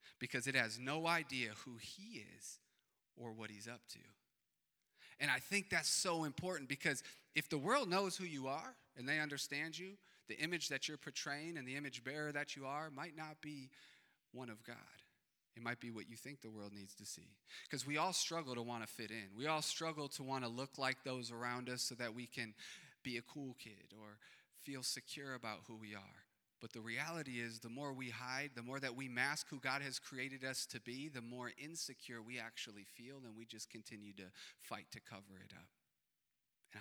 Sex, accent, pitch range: male, American, 115-145 Hz